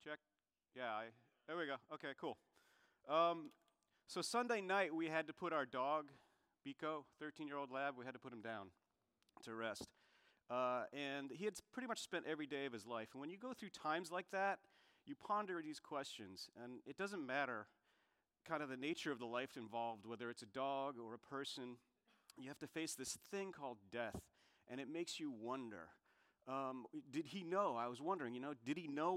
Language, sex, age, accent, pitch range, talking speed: English, male, 40-59, American, 125-185 Hz, 200 wpm